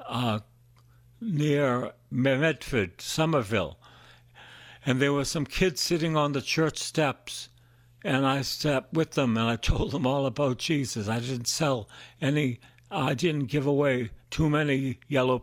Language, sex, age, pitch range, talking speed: English, male, 60-79, 120-145 Hz, 145 wpm